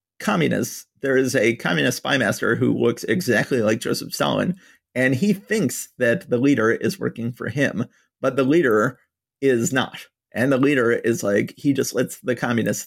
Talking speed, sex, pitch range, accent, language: 175 wpm, male, 120-145 Hz, American, English